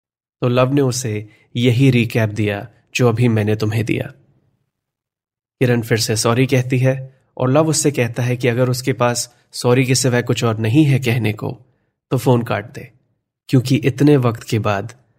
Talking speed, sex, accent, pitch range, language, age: 180 wpm, male, native, 110-130 Hz, Hindi, 30-49